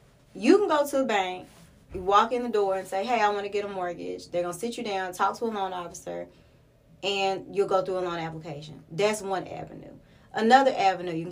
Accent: American